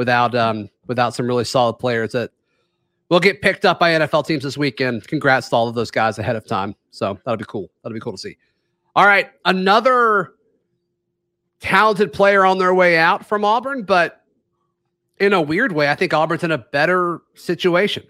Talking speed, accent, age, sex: 190 wpm, American, 30-49, male